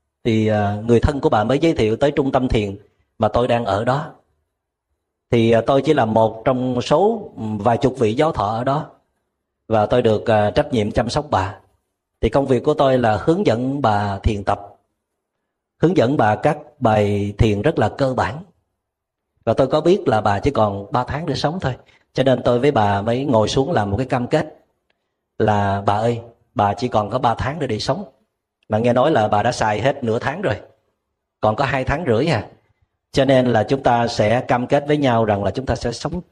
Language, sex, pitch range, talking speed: Vietnamese, male, 105-135 Hz, 215 wpm